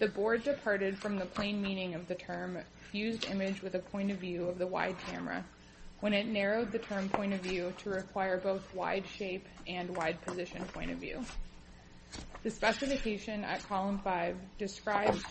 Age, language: 20-39, English